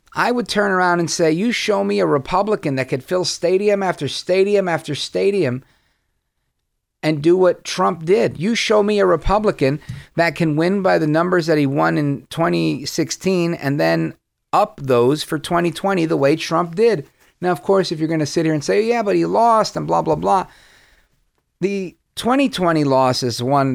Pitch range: 125-180 Hz